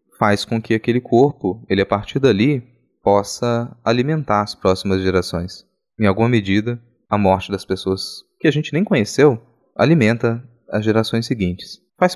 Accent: Brazilian